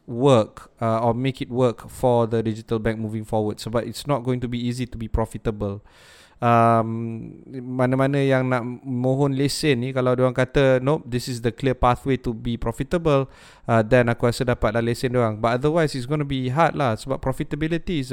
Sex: male